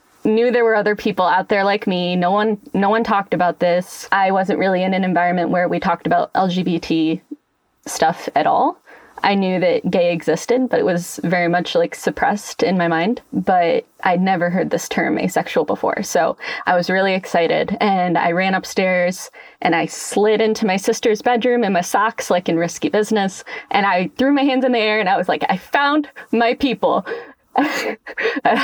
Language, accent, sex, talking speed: English, American, female, 195 wpm